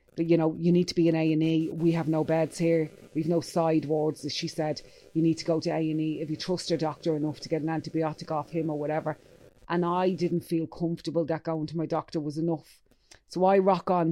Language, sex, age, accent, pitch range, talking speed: English, female, 30-49, Irish, 160-185 Hz, 240 wpm